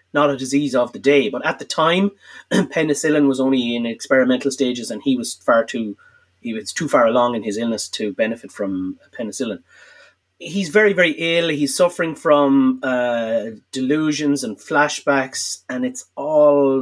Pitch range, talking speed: 125-165 Hz, 170 wpm